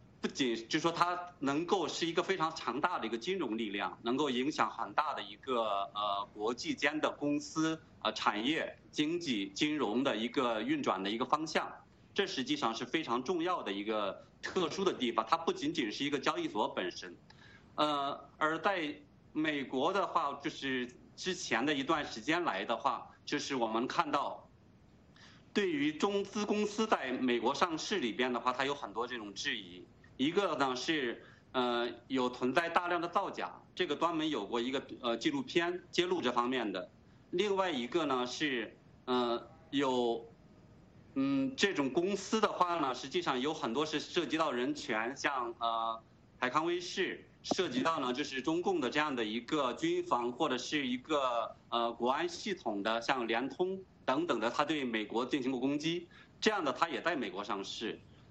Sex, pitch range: male, 125-200 Hz